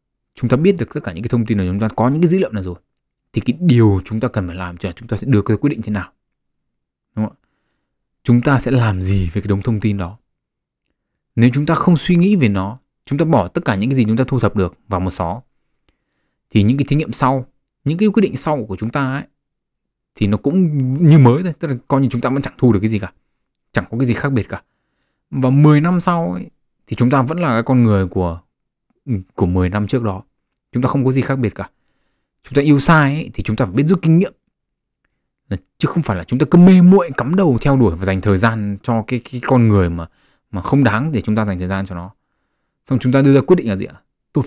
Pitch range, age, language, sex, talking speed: 100-140 Hz, 20-39, Vietnamese, male, 275 wpm